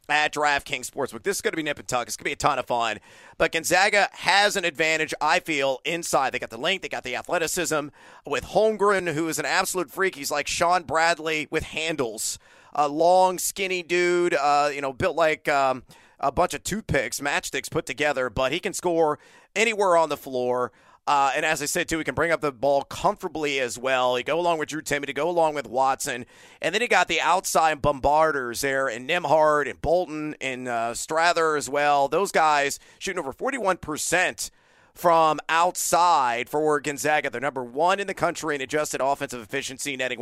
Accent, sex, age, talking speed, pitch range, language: American, male, 40-59, 205 wpm, 140-175 Hz, English